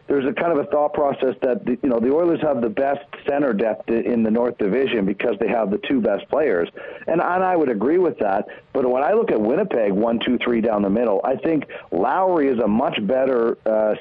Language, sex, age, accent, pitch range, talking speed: English, male, 50-69, American, 115-175 Hz, 230 wpm